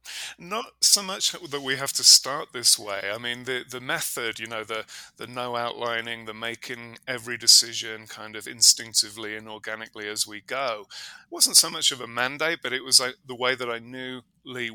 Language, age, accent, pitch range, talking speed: English, 30-49, British, 110-130 Hz, 195 wpm